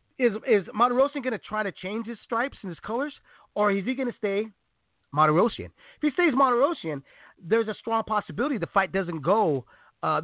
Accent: American